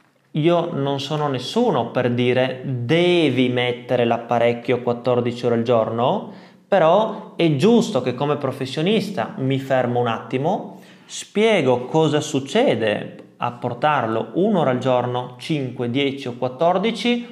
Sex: male